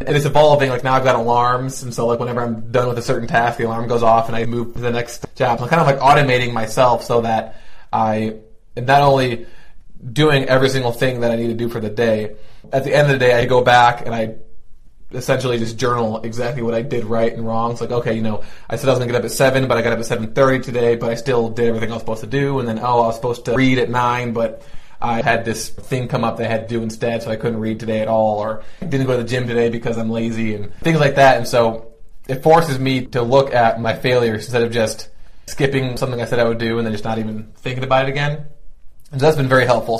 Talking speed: 280 wpm